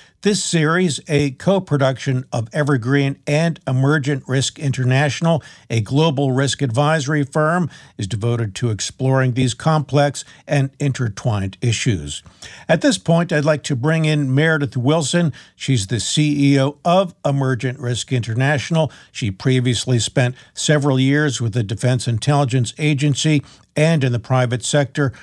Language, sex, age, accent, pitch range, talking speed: English, male, 50-69, American, 120-150 Hz, 135 wpm